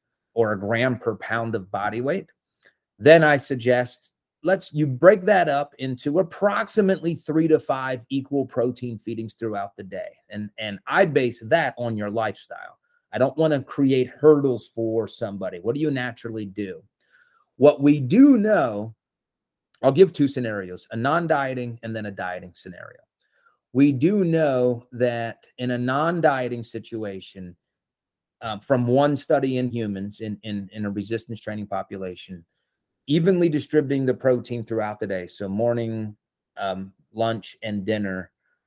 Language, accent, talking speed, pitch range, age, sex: English, American, 150 wpm, 110-140 Hz, 30-49, male